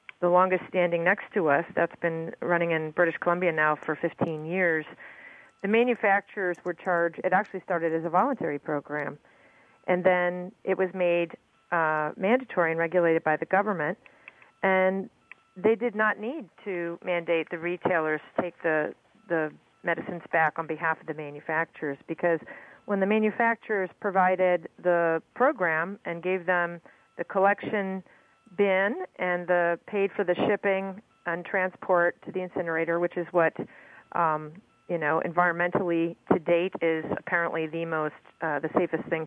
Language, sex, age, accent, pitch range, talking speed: English, female, 40-59, American, 165-190 Hz, 155 wpm